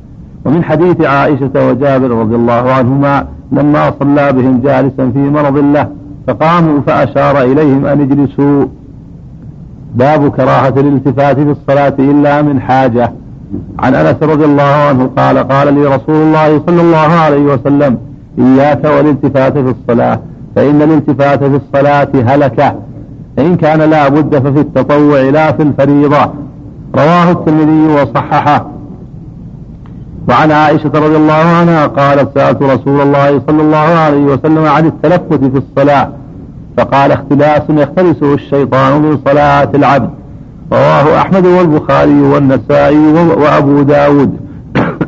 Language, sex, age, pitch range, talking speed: Arabic, male, 50-69, 140-150 Hz, 120 wpm